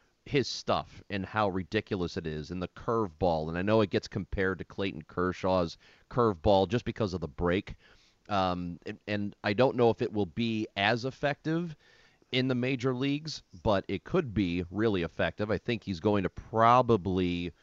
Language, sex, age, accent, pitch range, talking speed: English, male, 30-49, American, 90-115 Hz, 185 wpm